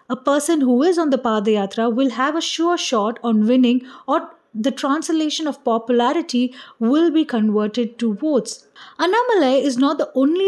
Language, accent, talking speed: English, Indian, 165 wpm